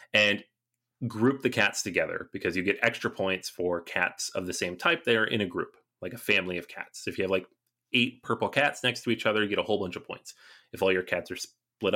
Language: English